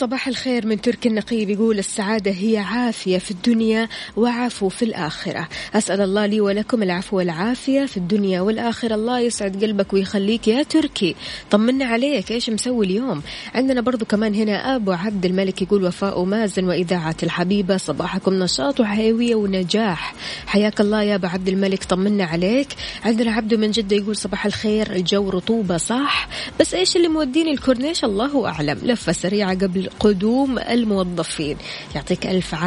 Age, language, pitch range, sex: 20-39, Arabic, 190-230 Hz, female